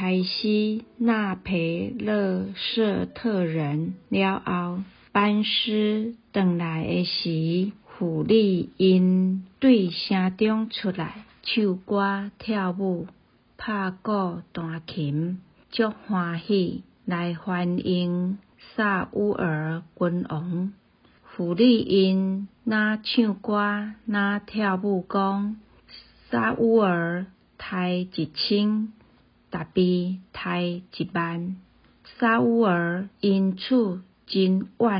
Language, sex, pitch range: Chinese, female, 180-215 Hz